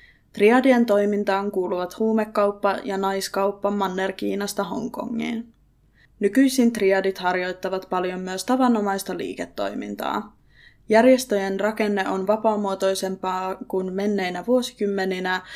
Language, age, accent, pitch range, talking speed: Finnish, 20-39, native, 185-210 Hz, 85 wpm